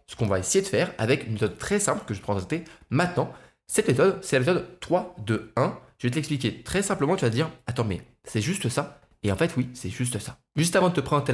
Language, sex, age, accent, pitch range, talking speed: French, male, 20-39, French, 115-170 Hz, 270 wpm